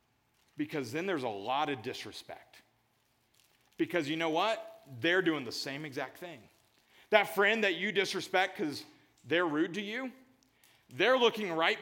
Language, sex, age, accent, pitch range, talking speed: English, male, 40-59, American, 155-230 Hz, 150 wpm